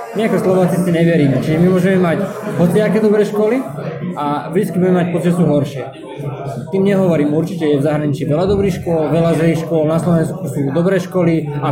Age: 20-39